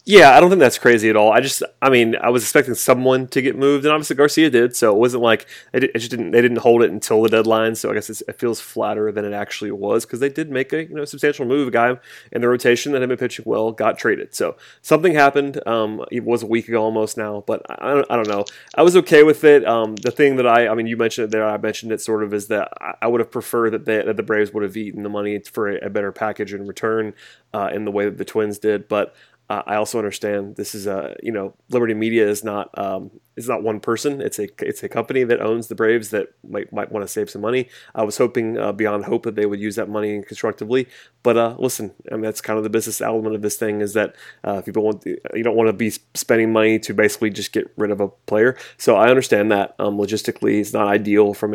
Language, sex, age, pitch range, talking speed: English, male, 30-49, 105-120 Hz, 270 wpm